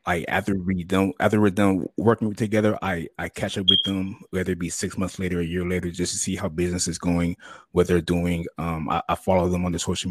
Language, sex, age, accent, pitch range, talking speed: English, male, 20-39, American, 90-110 Hz, 255 wpm